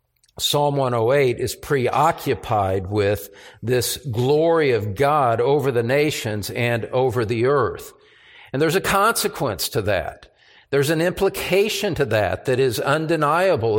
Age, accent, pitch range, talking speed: 50-69, American, 140-195 Hz, 130 wpm